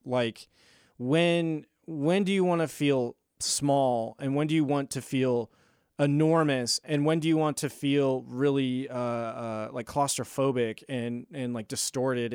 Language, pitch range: English, 125-150 Hz